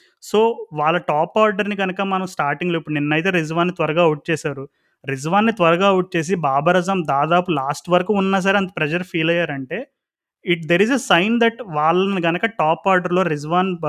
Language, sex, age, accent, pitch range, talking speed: Telugu, male, 30-49, native, 150-185 Hz, 170 wpm